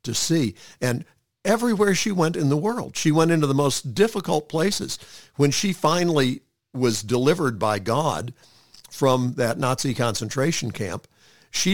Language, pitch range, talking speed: English, 120-165 Hz, 150 wpm